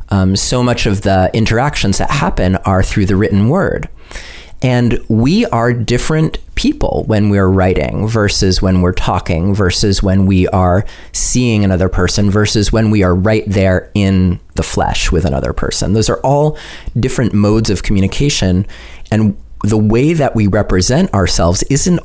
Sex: male